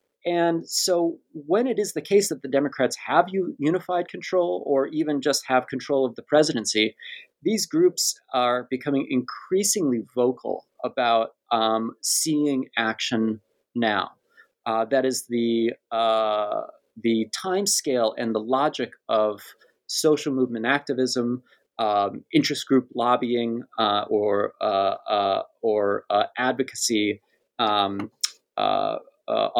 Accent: American